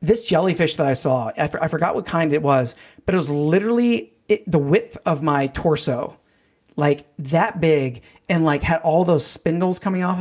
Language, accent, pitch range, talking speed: English, American, 150-200 Hz, 190 wpm